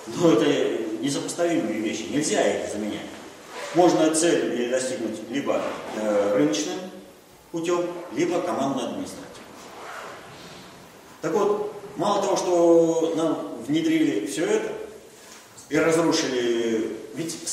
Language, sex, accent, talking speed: Russian, male, native, 100 wpm